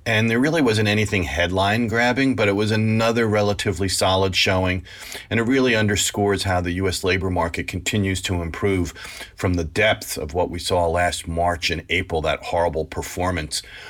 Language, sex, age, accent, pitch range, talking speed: English, male, 40-59, American, 90-110 Hz, 175 wpm